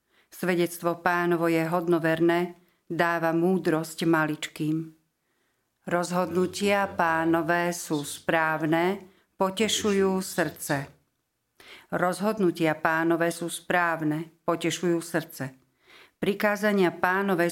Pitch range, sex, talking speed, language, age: 160-185 Hz, female, 70 wpm, Slovak, 50-69